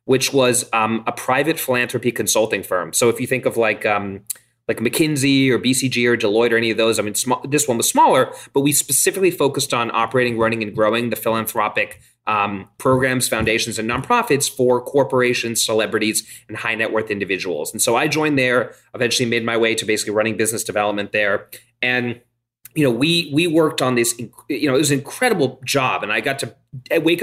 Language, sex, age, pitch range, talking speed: English, male, 30-49, 115-140 Hz, 200 wpm